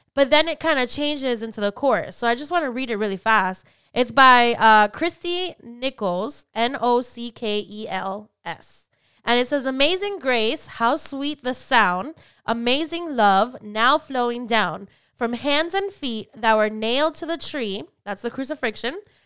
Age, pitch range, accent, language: 10-29, 230-295 Hz, American, English